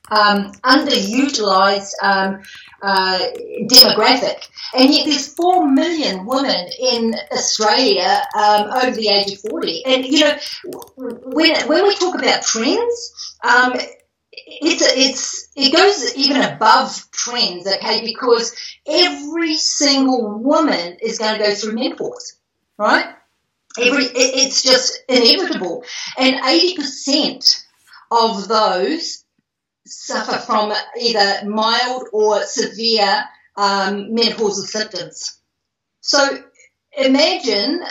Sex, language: female, English